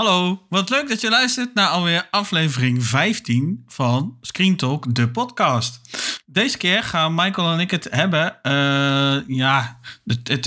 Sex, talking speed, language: male, 155 wpm, Dutch